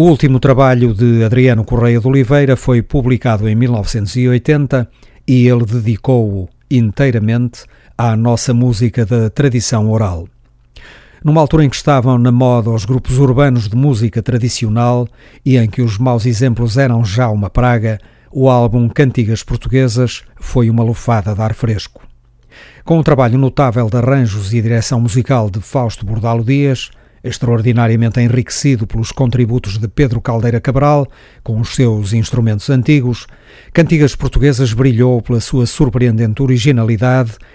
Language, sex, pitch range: Portuguese, male, 115-130 Hz